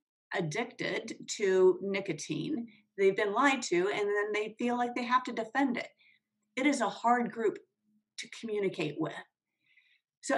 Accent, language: American, English